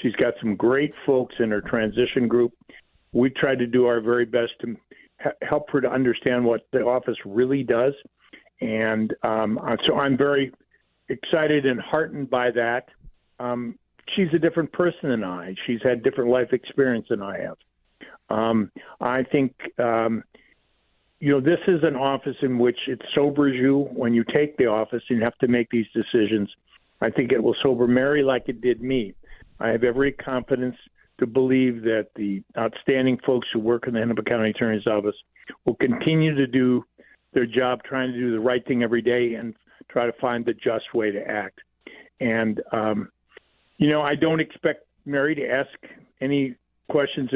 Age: 50-69